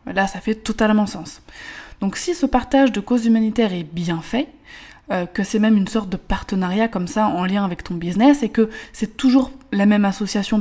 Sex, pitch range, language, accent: female, 200-245 Hz, French, French